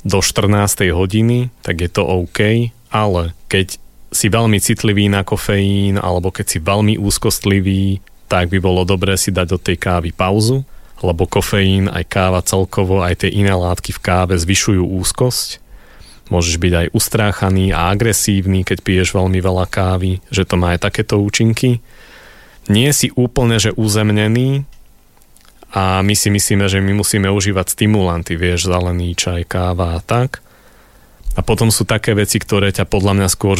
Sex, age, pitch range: male, 30-49, 90-110 Hz